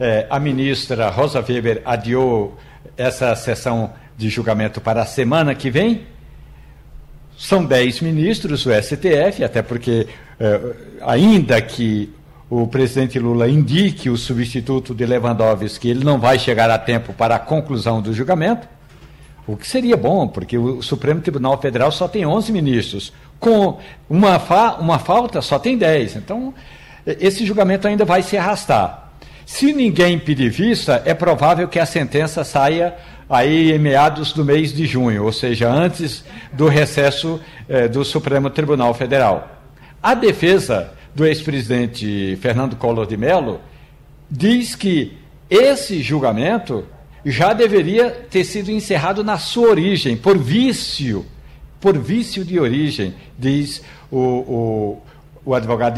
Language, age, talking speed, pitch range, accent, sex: Portuguese, 60-79, 140 wpm, 120-175 Hz, Brazilian, male